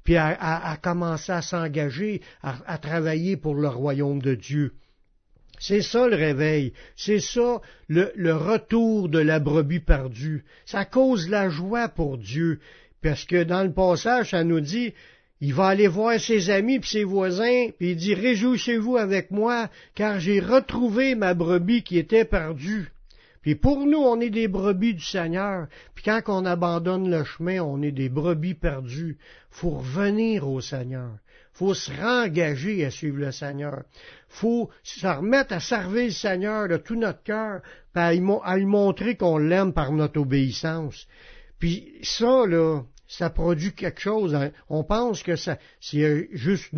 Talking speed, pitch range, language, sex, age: 170 wpm, 155-215 Hz, French, male, 60-79